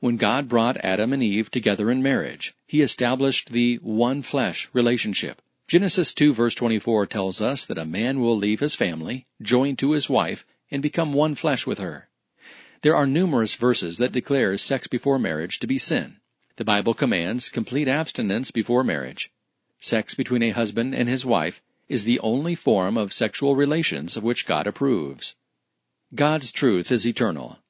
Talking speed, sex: 170 wpm, male